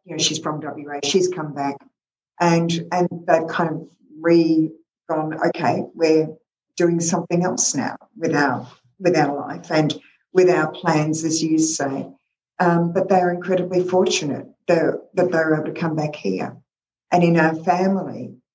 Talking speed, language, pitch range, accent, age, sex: 170 wpm, English, 150-175 Hz, Australian, 50-69, female